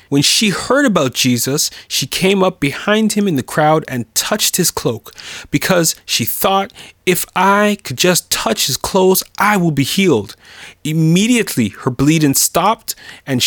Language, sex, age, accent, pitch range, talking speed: English, male, 30-49, American, 140-195 Hz, 160 wpm